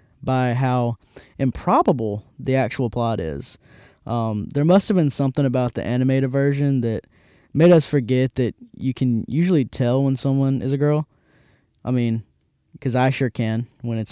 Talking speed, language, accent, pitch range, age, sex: 165 wpm, English, American, 125-175 Hz, 10-29, male